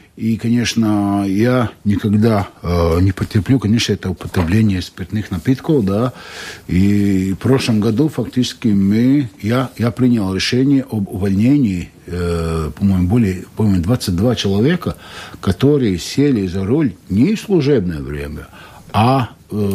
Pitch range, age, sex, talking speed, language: 90-120 Hz, 60-79, male, 125 wpm, Russian